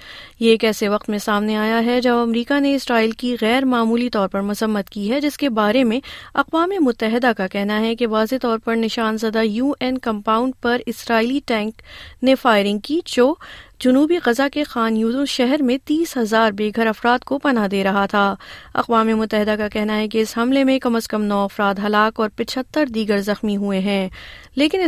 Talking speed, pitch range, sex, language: 205 wpm, 215-255 Hz, female, Urdu